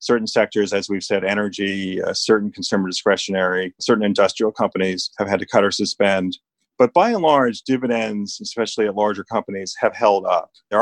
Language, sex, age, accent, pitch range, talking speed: English, male, 40-59, American, 105-125 Hz, 175 wpm